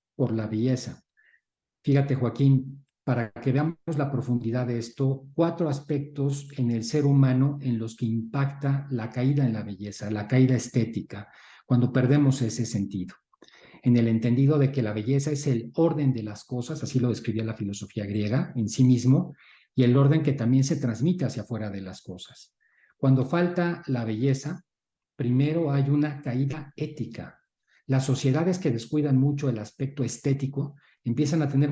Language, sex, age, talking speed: Spanish, male, 40-59, 165 wpm